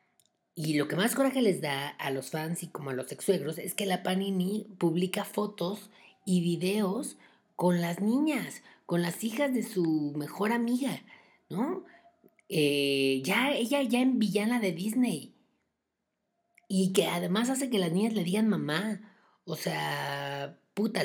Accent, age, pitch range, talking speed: Mexican, 30-49, 160-210 Hz, 155 wpm